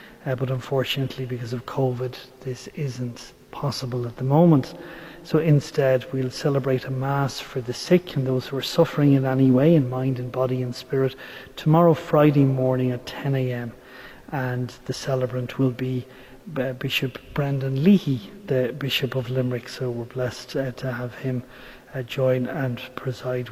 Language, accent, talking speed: English, Irish, 165 wpm